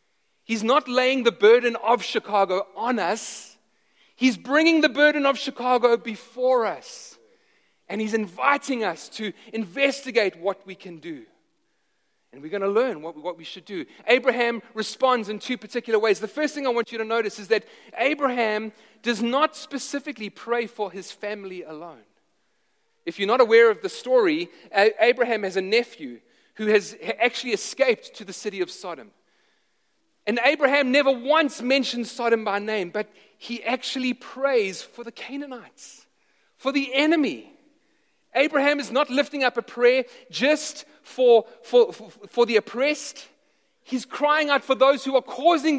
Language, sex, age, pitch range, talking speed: English, male, 30-49, 220-285 Hz, 155 wpm